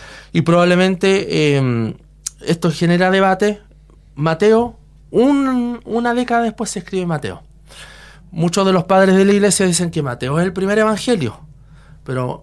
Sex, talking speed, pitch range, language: male, 140 wpm, 145-185 Hz, Spanish